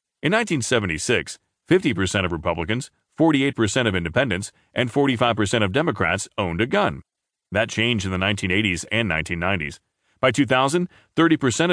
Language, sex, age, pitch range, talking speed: English, male, 40-59, 95-125 Hz, 125 wpm